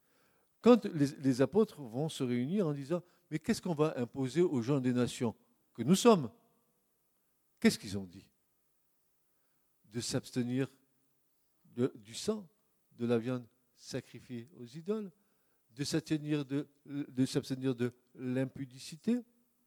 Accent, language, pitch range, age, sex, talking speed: French, French, 130-215 Hz, 50-69, male, 130 wpm